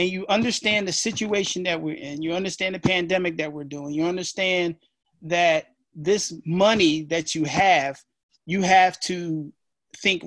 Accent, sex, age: American, male, 30-49